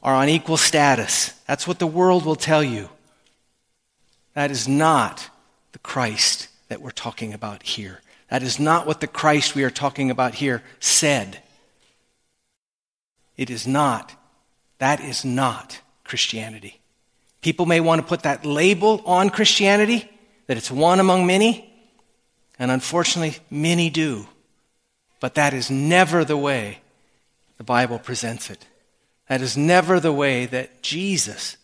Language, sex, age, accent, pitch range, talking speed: English, male, 40-59, American, 120-160 Hz, 140 wpm